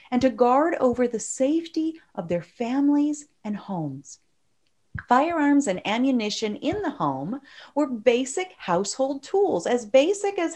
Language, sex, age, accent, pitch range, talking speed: English, female, 40-59, American, 185-300 Hz, 135 wpm